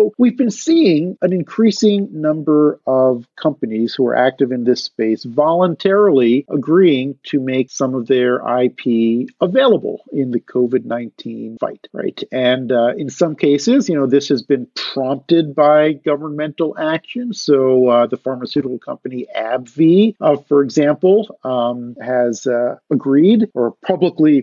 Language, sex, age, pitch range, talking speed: English, male, 50-69, 125-160 Hz, 140 wpm